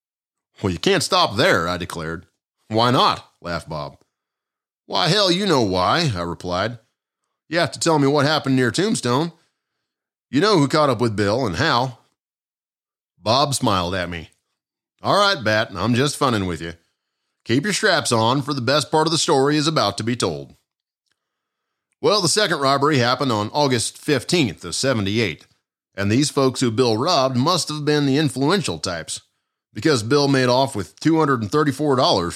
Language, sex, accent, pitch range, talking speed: English, male, American, 100-145 Hz, 170 wpm